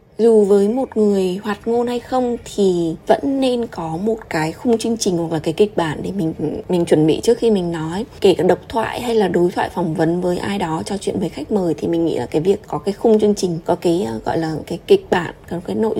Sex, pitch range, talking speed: female, 175-230 Hz, 265 wpm